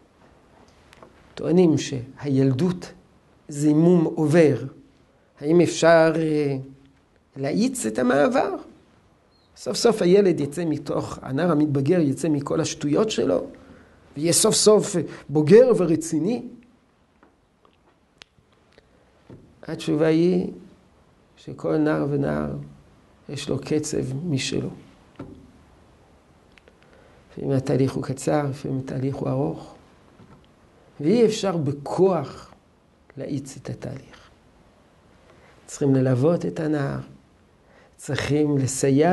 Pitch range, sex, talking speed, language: 135-180 Hz, male, 85 wpm, Hebrew